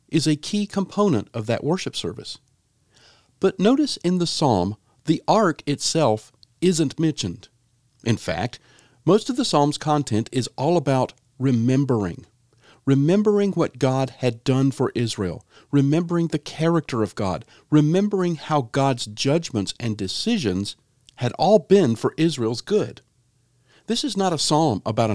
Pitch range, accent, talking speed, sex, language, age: 115-155 Hz, American, 140 wpm, male, English, 50-69